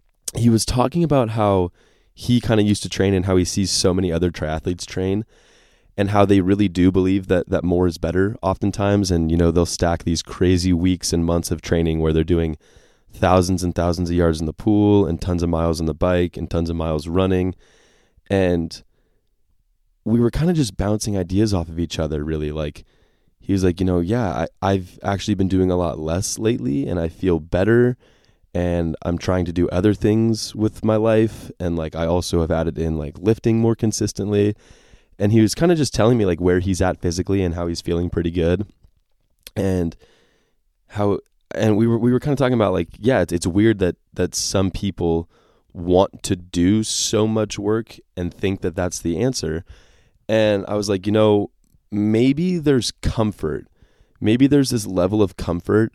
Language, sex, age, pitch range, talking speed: English, male, 20-39, 85-105 Hz, 200 wpm